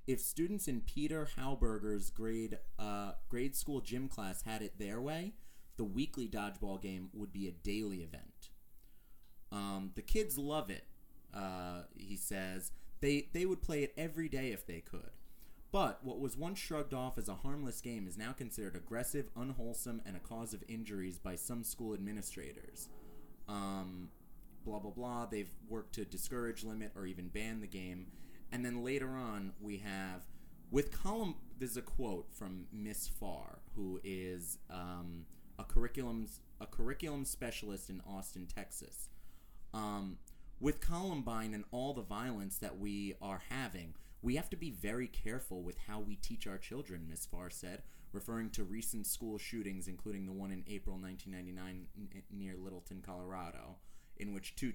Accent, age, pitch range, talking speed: American, 30-49, 95-120 Hz, 165 wpm